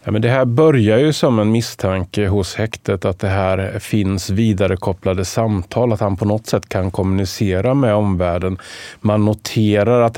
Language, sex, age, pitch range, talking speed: Swedish, male, 30-49, 95-115 Hz, 170 wpm